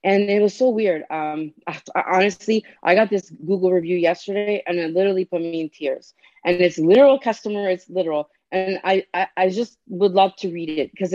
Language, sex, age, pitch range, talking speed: English, female, 30-49, 175-215 Hz, 210 wpm